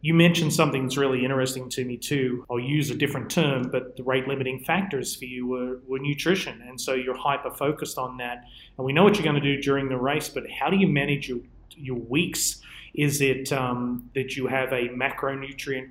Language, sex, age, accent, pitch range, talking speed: English, male, 30-49, Australian, 130-150 Hz, 210 wpm